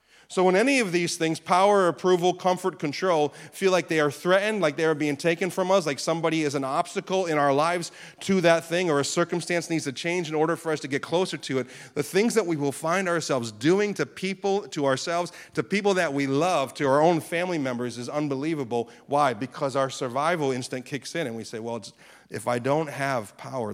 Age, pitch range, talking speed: 40-59, 135-175 Hz, 220 wpm